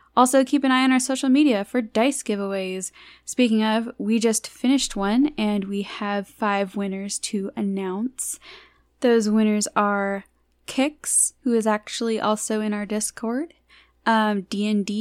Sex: female